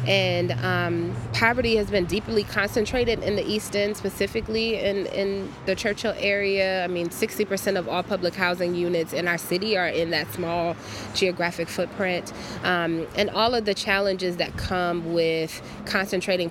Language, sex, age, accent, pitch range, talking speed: English, female, 20-39, American, 165-200 Hz, 160 wpm